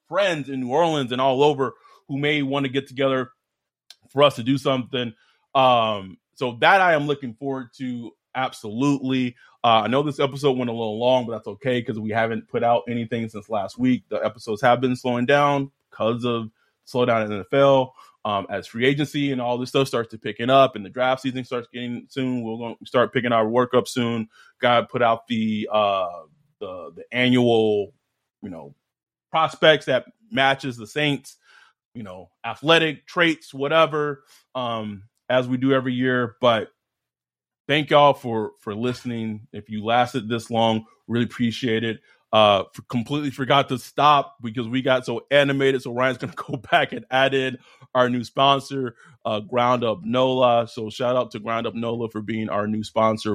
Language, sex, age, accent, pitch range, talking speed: English, male, 20-39, American, 110-135 Hz, 190 wpm